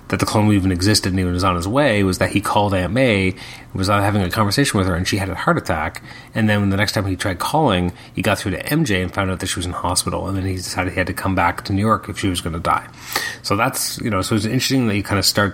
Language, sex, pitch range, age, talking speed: English, male, 90-105 Hz, 30-49, 310 wpm